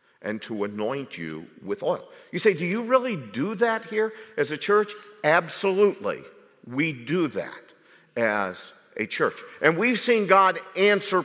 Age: 50-69